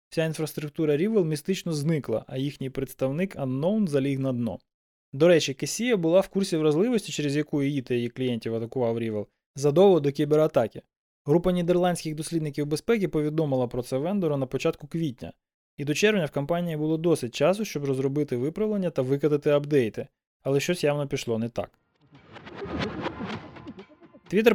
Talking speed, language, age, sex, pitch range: 150 wpm, Ukrainian, 20-39, male, 130-165 Hz